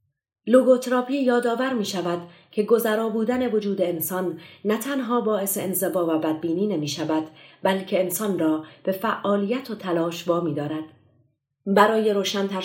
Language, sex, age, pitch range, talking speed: Persian, female, 30-49, 160-205 Hz, 135 wpm